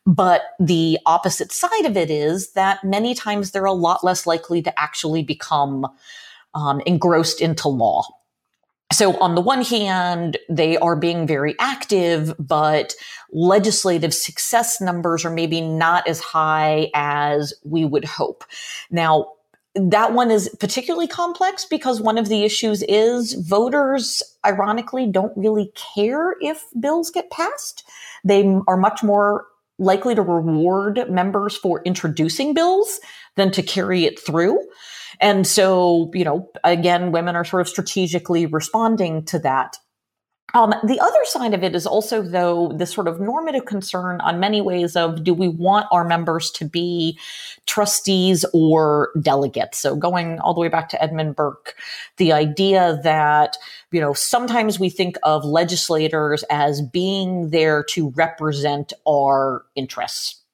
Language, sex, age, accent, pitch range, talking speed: English, female, 40-59, American, 160-210 Hz, 150 wpm